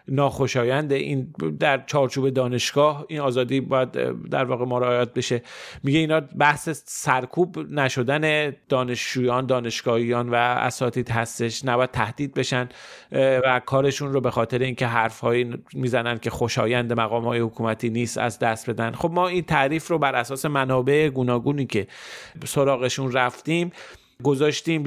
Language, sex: Persian, male